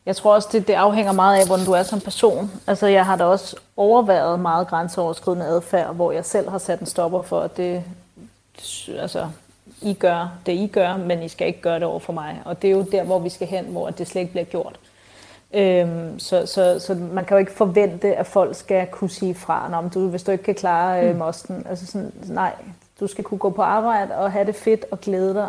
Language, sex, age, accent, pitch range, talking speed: Danish, female, 30-49, native, 175-195 Hz, 240 wpm